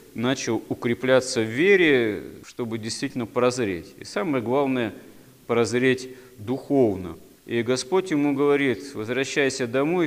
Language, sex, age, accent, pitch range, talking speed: Russian, male, 40-59, native, 110-135 Hz, 105 wpm